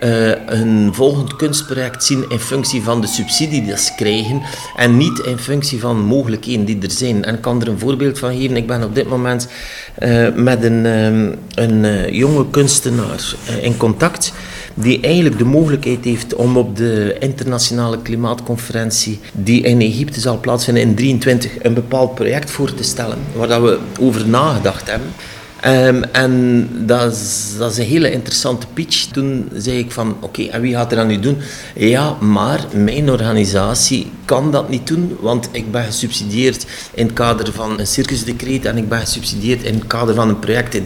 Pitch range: 115-135 Hz